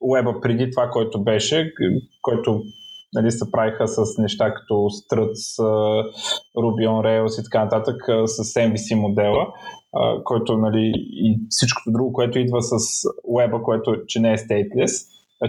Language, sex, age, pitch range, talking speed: Bulgarian, male, 20-39, 110-135 Hz, 145 wpm